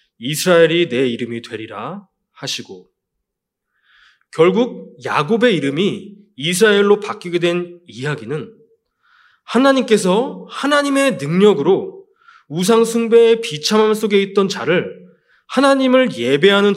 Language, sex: Korean, male